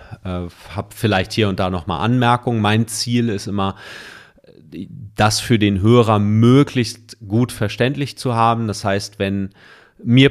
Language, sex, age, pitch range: German, male, 40-59, 95-115 Hz